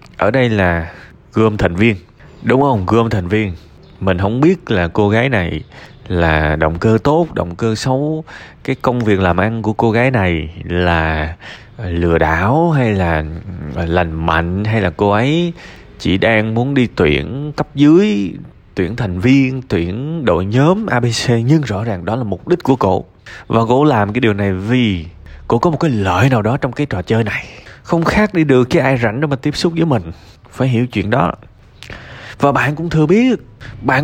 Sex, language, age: male, Vietnamese, 20-39